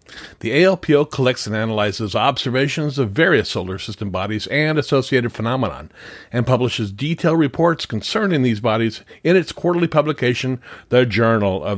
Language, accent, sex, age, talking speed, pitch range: English, American, male, 50-69, 145 wpm, 110-140 Hz